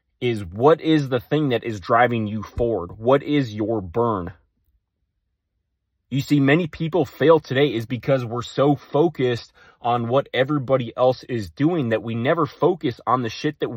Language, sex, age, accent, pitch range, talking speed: English, male, 20-39, American, 95-135 Hz, 170 wpm